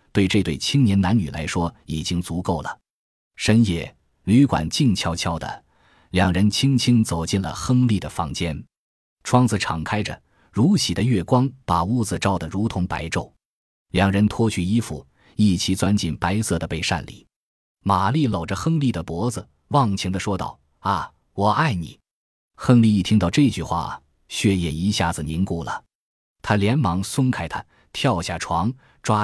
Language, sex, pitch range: Chinese, male, 85-110 Hz